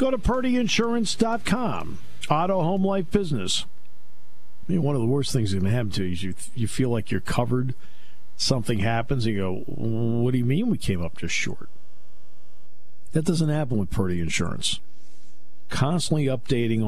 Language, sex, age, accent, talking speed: English, male, 50-69, American, 170 wpm